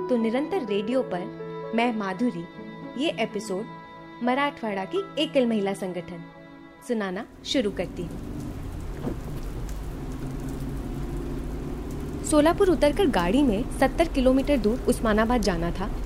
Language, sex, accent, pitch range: Hindi, female, native, 200-300 Hz